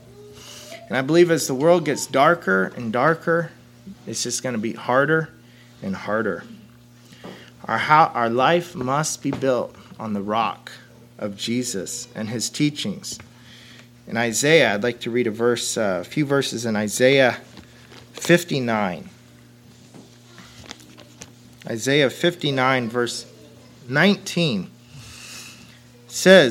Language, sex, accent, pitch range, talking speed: English, male, American, 120-170 Hz, 115 wpm